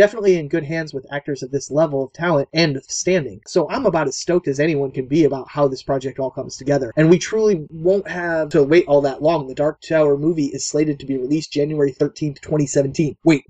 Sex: male